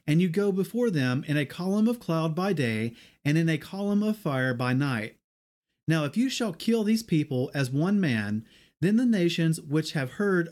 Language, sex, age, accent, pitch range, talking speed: English, male, 40-59, American, 135-200 Hz, 205 wpm